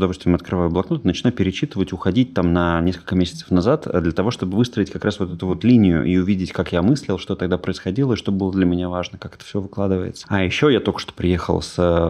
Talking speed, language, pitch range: 235 wpm, Russian, 85-95 Hz